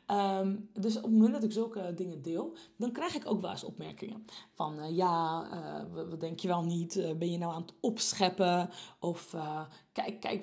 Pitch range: 180-230 Hz